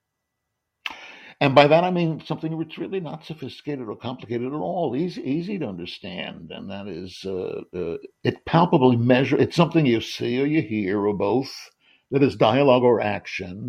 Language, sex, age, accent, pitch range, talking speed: English, male, 60-79, American, 110-155 Hz, 175 wpm